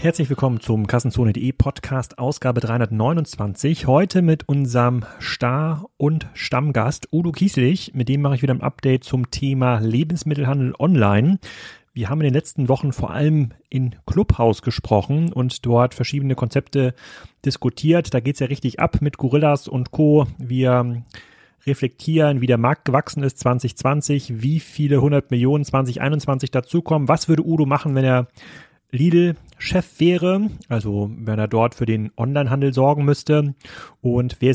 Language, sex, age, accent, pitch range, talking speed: German, male, 30-49, German, 120-150 Hz, 150 wpm